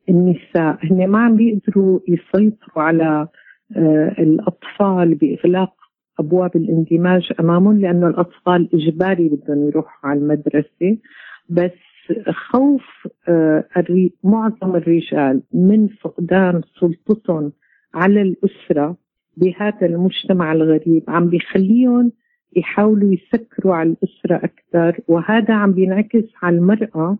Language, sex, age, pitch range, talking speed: Arabic, female, 50-69, 160-200 Hz, 95 wpm